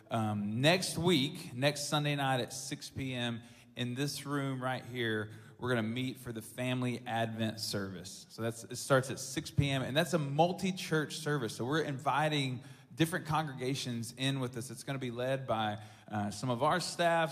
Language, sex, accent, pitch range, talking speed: English, male, American, 115-140 Hz, 185 wpm